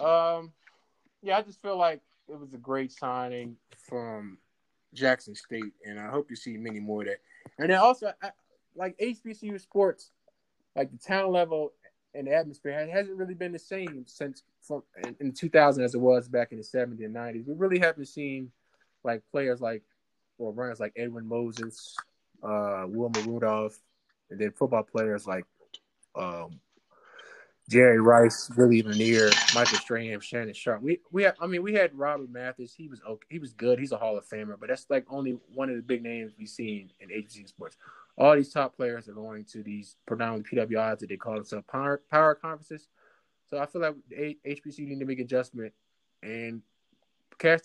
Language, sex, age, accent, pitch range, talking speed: English, male, 20-39, American, 115-160 Hz, 185 wpm